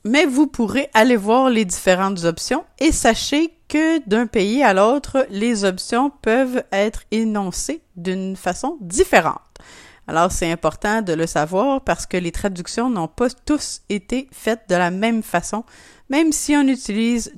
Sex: female